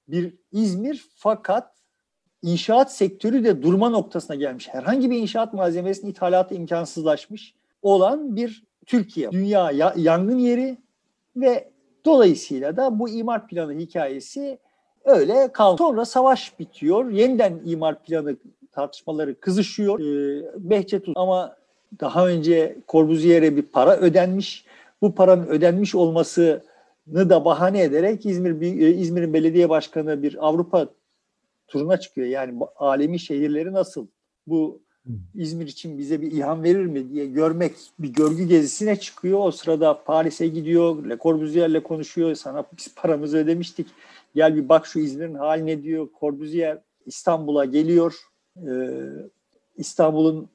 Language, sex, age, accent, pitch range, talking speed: Turkish, male, 50-69, native, 155-200 Hz, 125 wpm